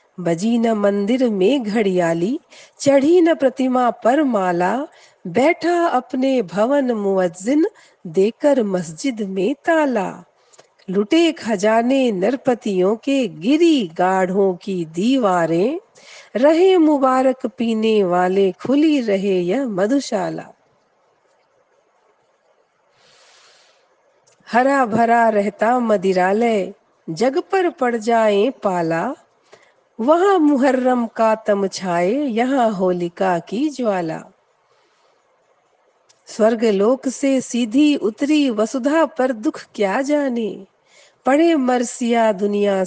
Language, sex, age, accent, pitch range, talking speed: Hindi, female, 50-69, native, 200-280 Hz, 85 wpm